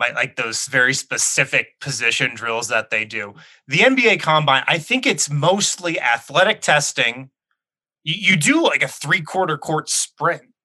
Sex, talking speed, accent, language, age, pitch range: male, 145 wpm, American, English, 20-39, 130-160 Hz